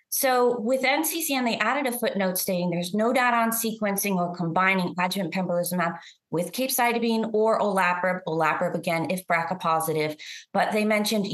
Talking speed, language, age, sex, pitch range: 155 wpm, English, 30-49, female, 180-235 Hz